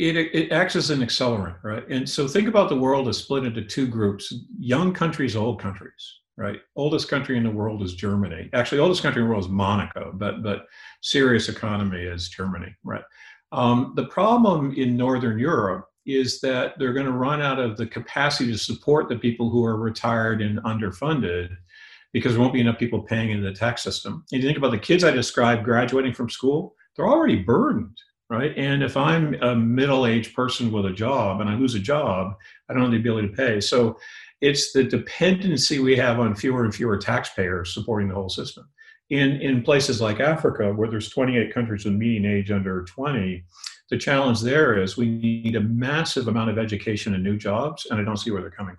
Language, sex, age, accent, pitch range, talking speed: English, male, 50-69, American, 105-135 Hz, 205 wpm